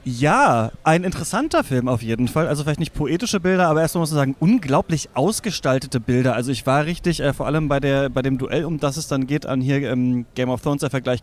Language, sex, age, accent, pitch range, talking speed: German, male, 30-49, German, 130-160 Hz, 240 wpm